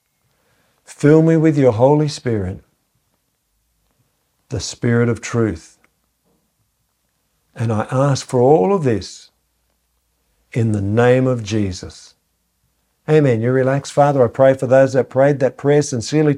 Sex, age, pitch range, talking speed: male, 50-69, 115-150 Hz, 130 wpm